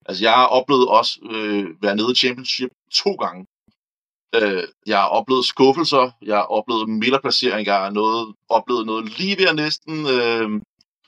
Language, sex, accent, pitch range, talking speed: Danish, male, native, 105-135 Hz, 160 wpm